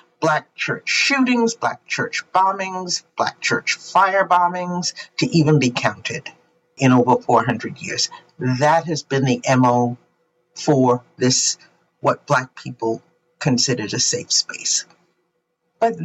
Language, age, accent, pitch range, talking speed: English, 50-69, American, 140-195 Hz, 125 wpm